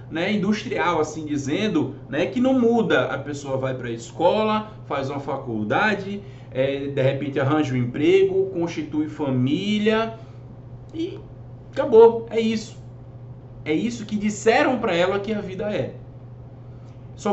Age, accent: 20-39, Brazilian